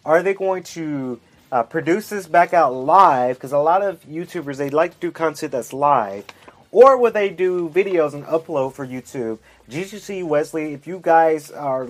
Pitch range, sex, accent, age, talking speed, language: 135-180 Hz, male, American, 30-49, 185 wpm, English